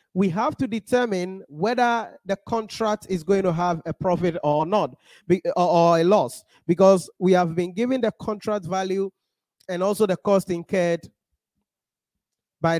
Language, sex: English, male